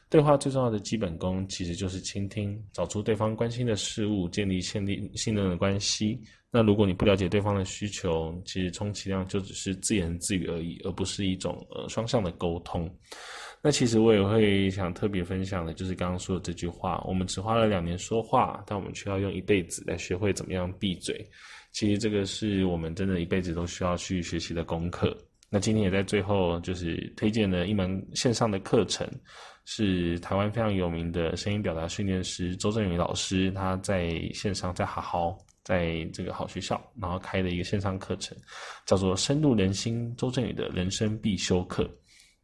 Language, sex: Chinese, male